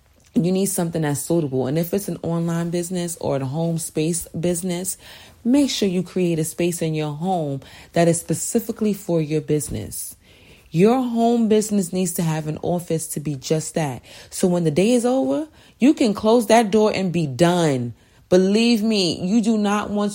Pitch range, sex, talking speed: 155-195 Hz, female, 190 wpm